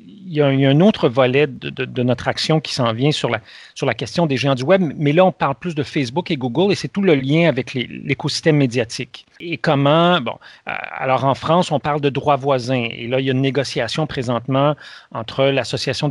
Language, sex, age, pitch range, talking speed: French, male, 40-59, 130-170 Hz, 240 wpm